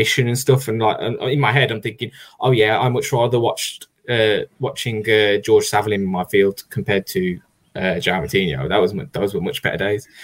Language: English